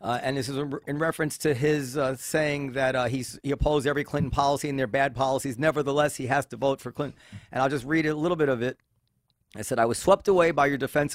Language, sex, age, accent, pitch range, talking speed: English, male, 40-59, American, 125-155 Hz, 255 wpm